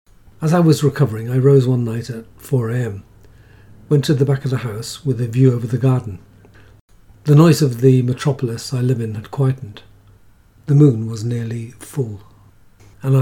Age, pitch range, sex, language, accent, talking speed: 50-69, 100-135 Hz, male, English, British, 175 wpm